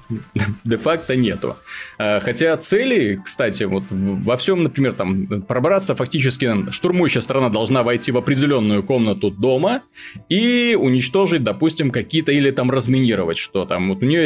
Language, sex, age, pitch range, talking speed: Russian, male, 20-39, 110-145 Hz, 135 wpm